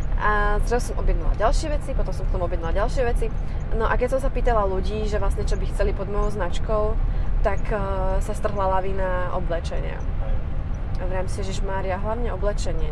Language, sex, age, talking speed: Slovak, female, 20-39, 195 wpm